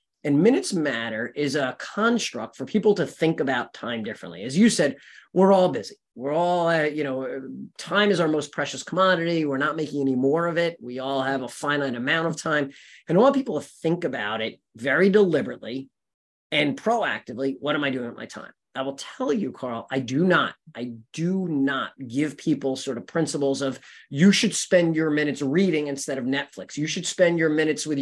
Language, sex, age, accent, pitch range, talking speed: English, male, 30-49, American, 140-190 Hz, 205 wpm